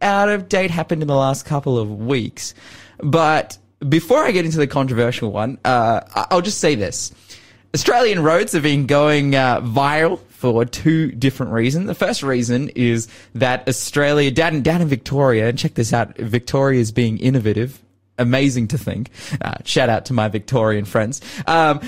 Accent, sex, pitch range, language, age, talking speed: Australian, male, 110-140 Hz, English, 20-39, 175 wpm